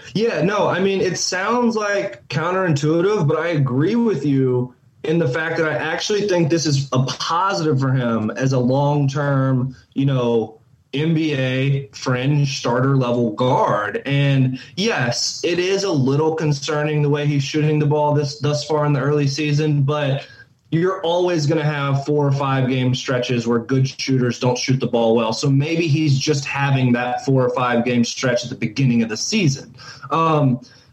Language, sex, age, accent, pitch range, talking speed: English, male, 20-39, American, 130-155 Hz, 180 wpm